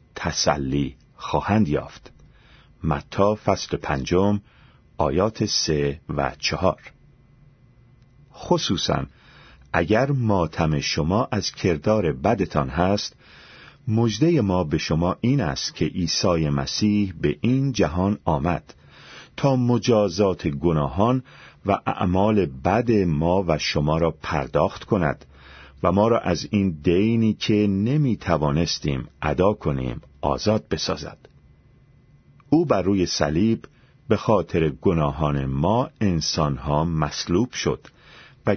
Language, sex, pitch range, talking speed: Persian, male, 80-120 Hz, 105 wpm